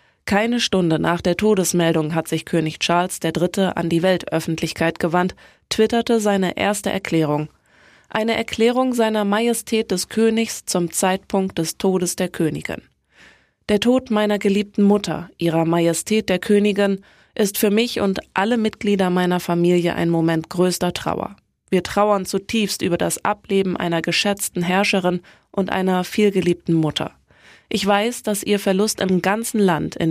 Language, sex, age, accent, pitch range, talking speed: German, female, 20-39, German, 170-205 Hz, 145 wpm